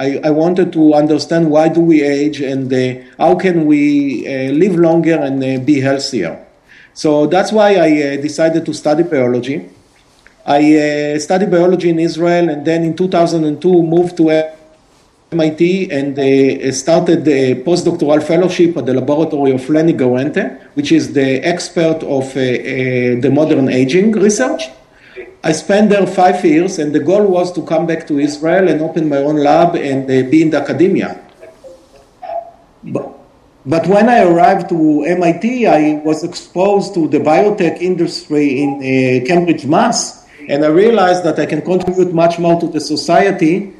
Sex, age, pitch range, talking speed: male, 50-69, 145-175 Hz, 165 wpm